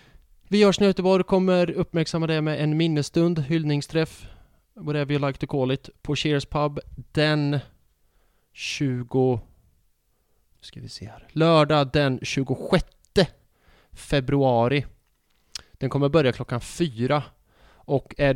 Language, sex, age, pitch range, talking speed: English, male, 20-39, 115-155 Hz, 120 wpm